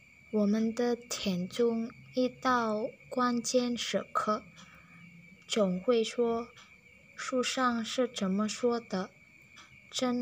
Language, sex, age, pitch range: Chinese, female, 20-39, 195-240 Hz